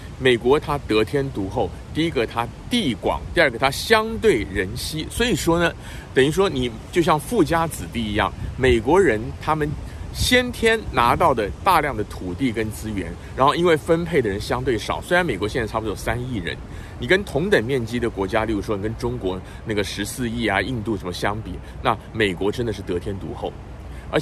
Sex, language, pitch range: male, Chinese, 100-150 Hz